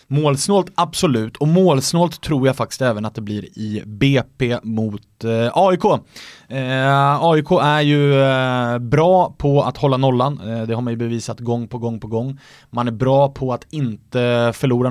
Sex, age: male, 20-39